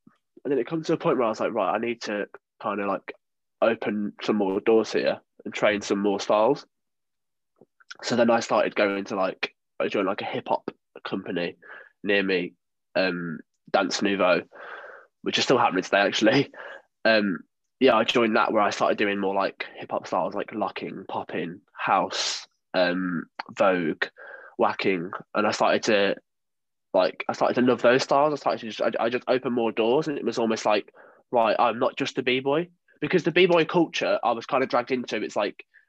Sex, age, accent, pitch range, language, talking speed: male, 20-39, British, 110-145 Hz, English, 195 wpm